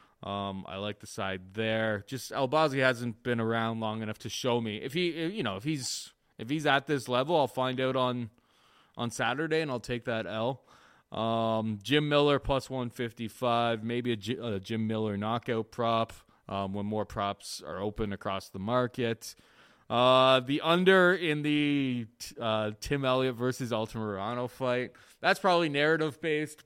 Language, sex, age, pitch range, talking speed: English, male, 20-39, 110-130 Hz, 180 wpm